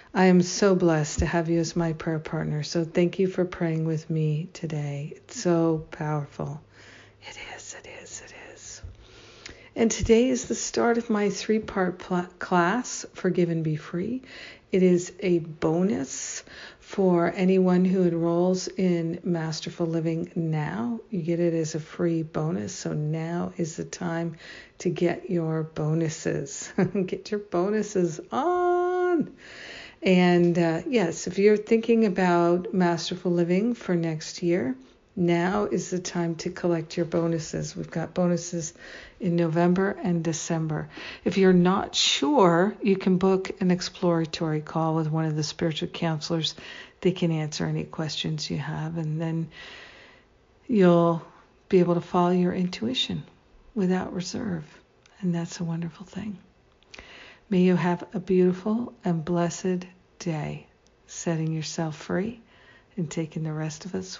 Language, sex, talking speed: English, female, 145 wpm